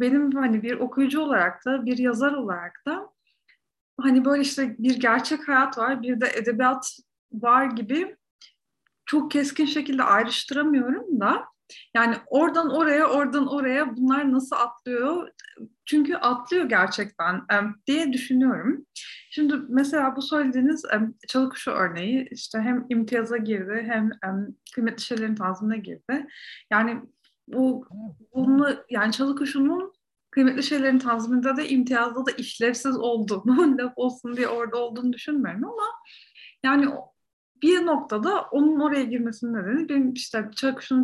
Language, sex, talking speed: Turkish, female, 125 wpm